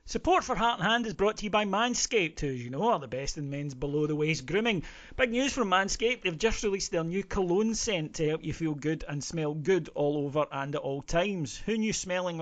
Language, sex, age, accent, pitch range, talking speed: English, male, 40-59, British, 140-180 Hz, 240 wpm